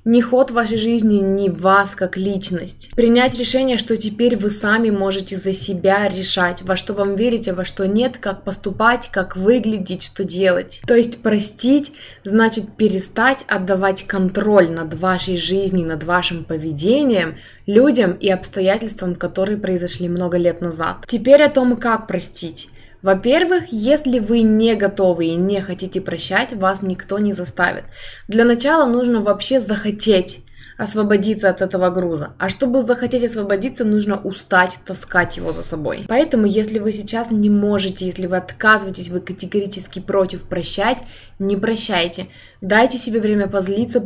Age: 20-39